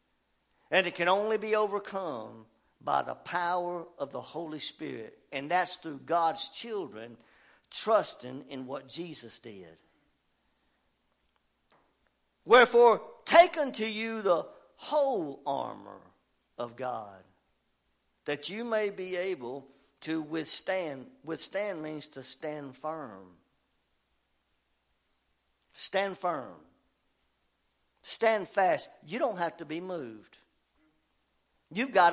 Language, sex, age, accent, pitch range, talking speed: English, male, 60-79, American, 150-210 Hz, 105 wpm